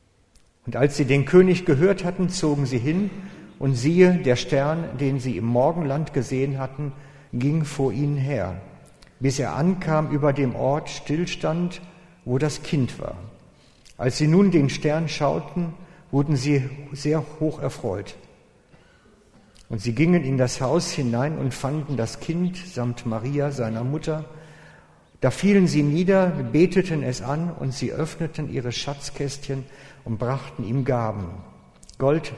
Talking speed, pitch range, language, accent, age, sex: 145 wpm, 125-155 Hz, German, German, 50-69, male